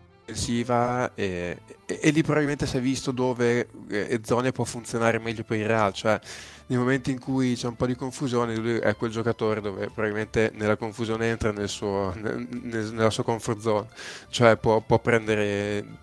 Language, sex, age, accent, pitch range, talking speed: Italian, male, 20-39, native, 110-125 Hz, 185 wpm